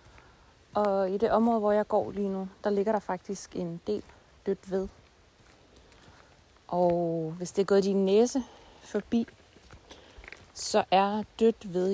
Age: 30-49